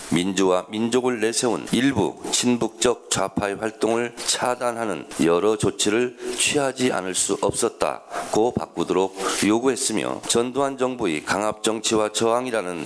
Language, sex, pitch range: Korean, male, 100-125 Hz